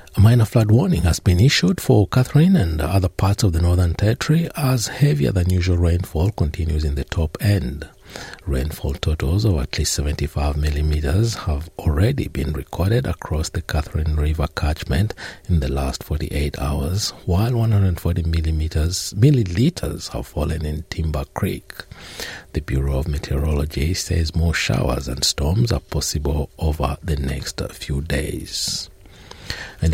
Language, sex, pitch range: English, male, 75-105 Hz